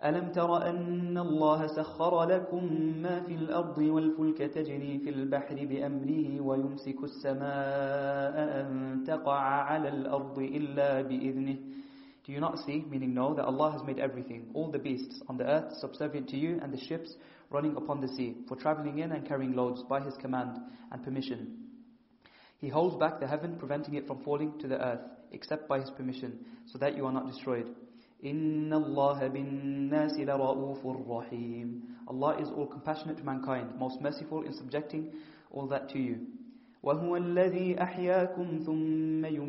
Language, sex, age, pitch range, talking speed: English, male, 30-49, 135-155 Hz, 140 wpm